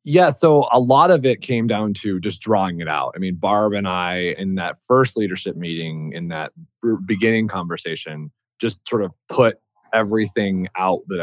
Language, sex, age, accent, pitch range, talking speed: English, male, 20-39, American, 95-125 Hz, 180 wpm